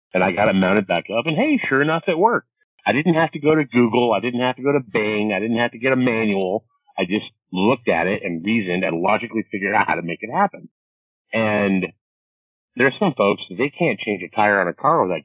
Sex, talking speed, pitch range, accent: male, 250 wpm, 85-120 Hz, American